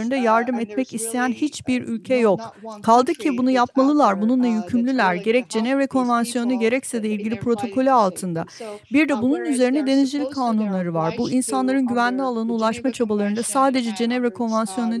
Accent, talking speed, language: native, 145 wpm, Turkish